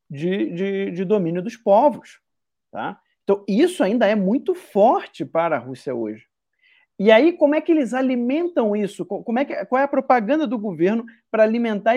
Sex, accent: male, Brazilian